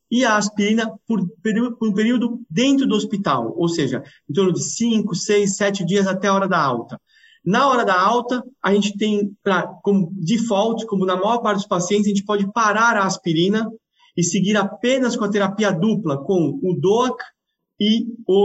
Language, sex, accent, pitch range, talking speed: English, male, Brazilian, 185-225 Hz, 185 wpm